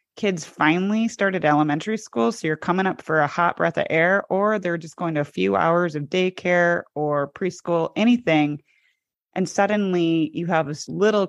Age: 30-49